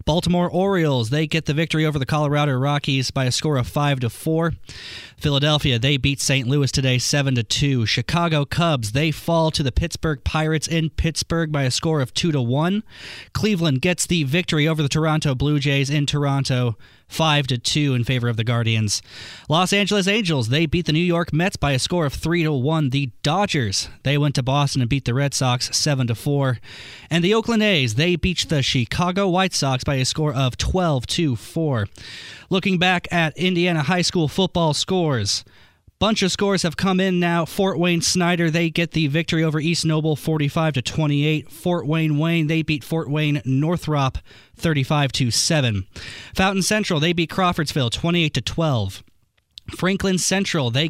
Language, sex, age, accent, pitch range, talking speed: English, male, 20-39, American, 130-170 Hz, 185 wpm